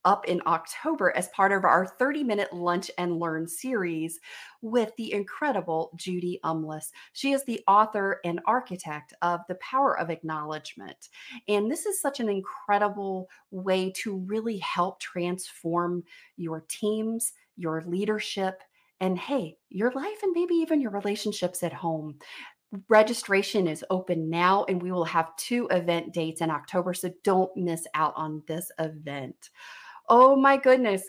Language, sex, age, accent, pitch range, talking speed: English, female, 30-49, American, 165-220 Hz, 150 wpm